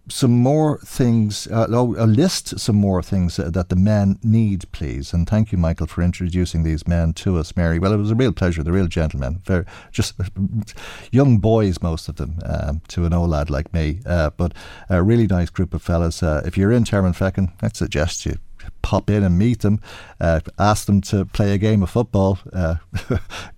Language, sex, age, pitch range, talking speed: English, male, 50-69, 90-110 Hz, 205 wpm